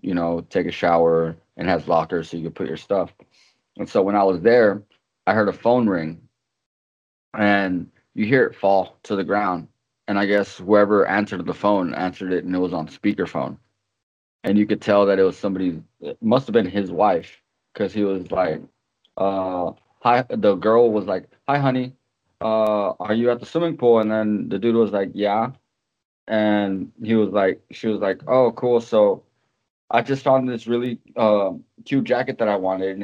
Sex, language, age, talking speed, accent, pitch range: male, English, 20-39, 195 wpm, American, 95-120 Hz